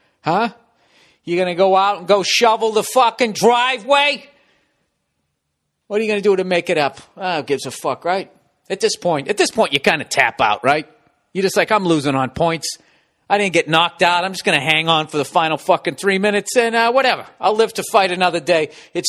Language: English